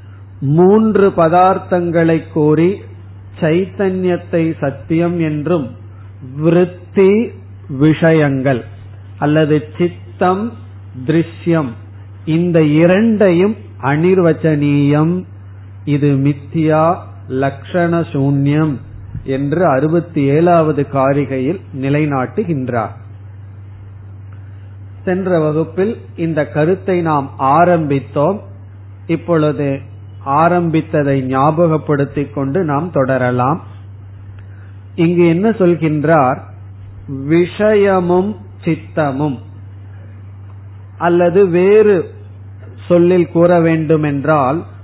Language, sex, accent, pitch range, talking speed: Tamil, male, native, 100-165 Hz, 35 wpm